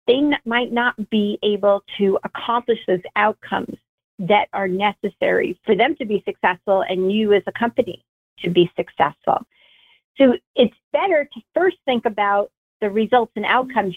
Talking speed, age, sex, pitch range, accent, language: 155 wpm, 40-59, female, 195-250 Hz, American, English